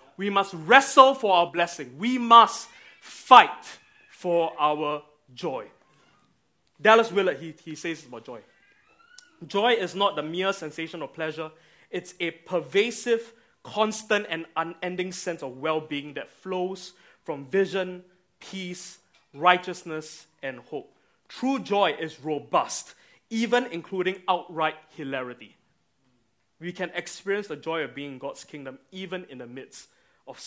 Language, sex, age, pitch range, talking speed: English, male, 20-39, 140-190 Hz, 135 wpm